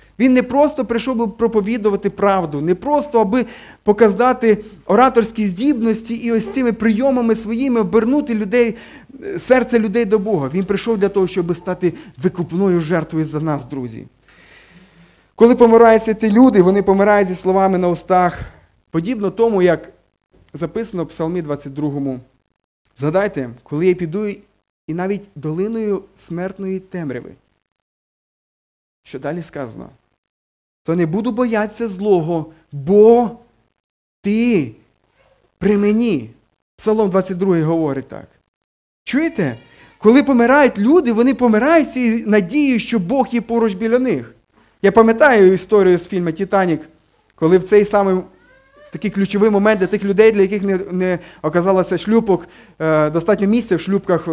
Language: Ukrainian